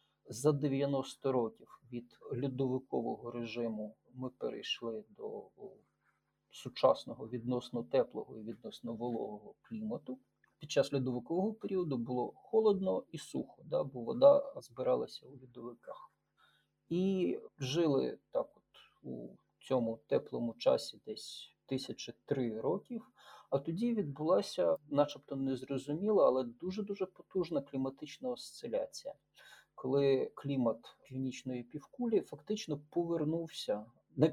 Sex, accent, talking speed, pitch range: male, native, 105 wpm, 120-175 Hz